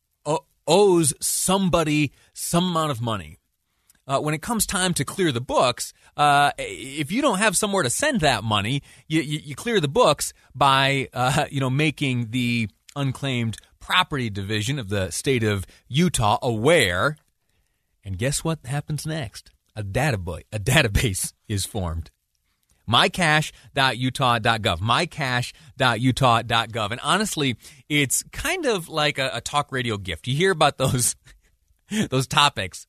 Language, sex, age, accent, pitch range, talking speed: English, male, 30-49, American, 110-150 Hz, 135 wpm